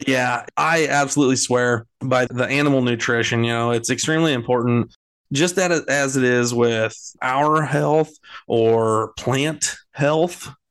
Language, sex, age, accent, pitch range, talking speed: English, male, 20-39, American, 115-140 Hz, 135 wpm